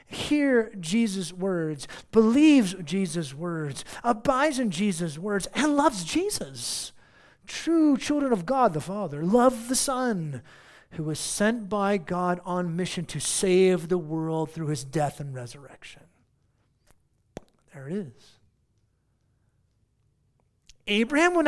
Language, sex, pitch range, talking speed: English, male, 135-210 Hz, 120 wpm